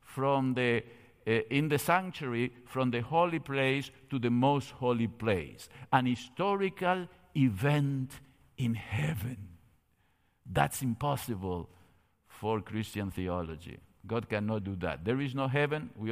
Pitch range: 110-140 Hz